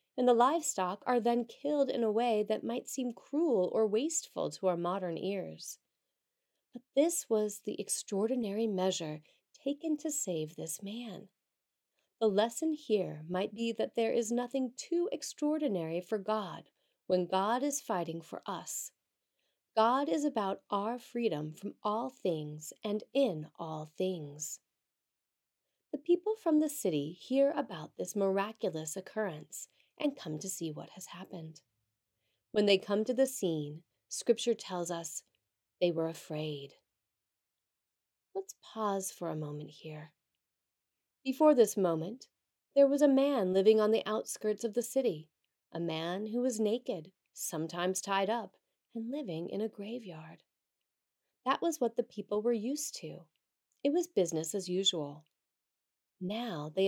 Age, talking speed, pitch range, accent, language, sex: 30-49, 145 wpm, 170-245 Hz, American, English, female